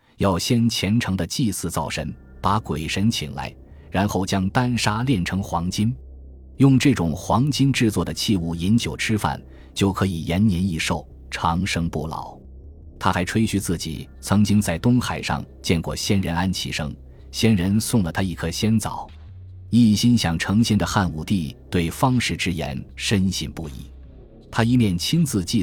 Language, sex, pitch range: Chinese, male, 80-110 Hz